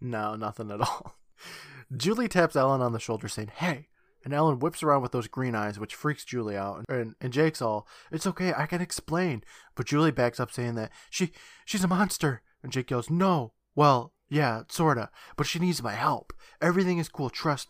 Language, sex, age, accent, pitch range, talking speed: English, male, 20-39, American, 115-150 Hz, 200 wpm